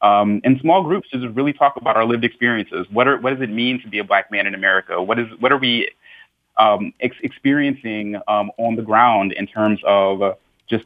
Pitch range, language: 105-125 Hz, English